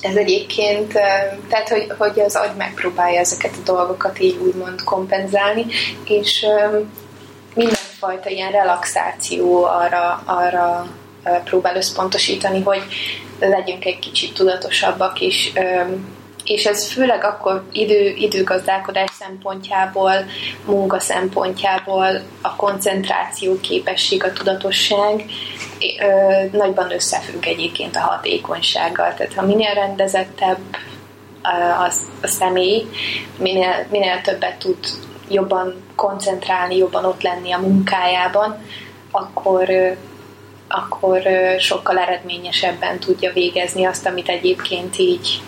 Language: Hungarian